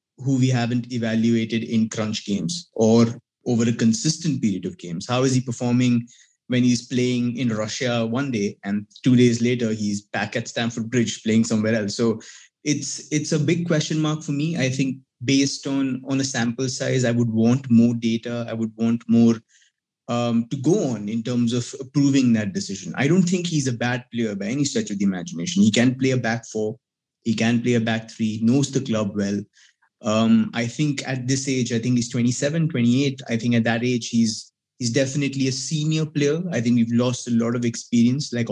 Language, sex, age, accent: English, male, 20-39, Indian